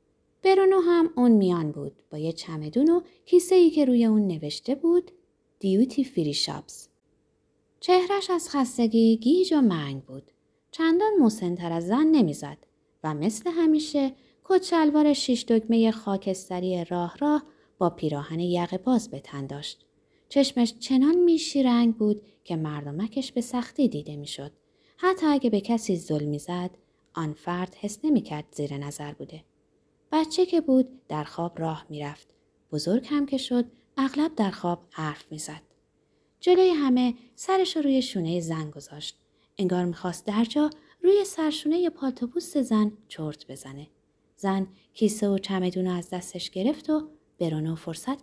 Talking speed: 140 wpm